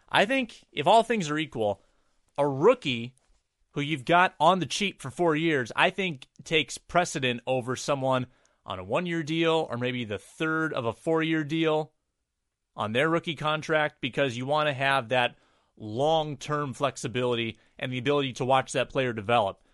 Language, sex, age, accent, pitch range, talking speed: English, male, 30-49, American, 130-170 Hz, 170 wpm